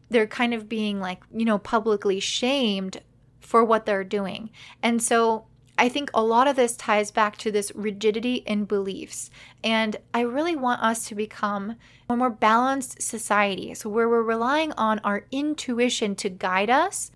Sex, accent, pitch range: female, American, 200-240 Hz